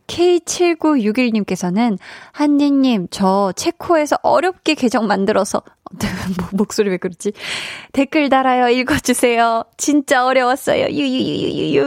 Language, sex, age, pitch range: Korean, female, 20-39, 195-280 Hz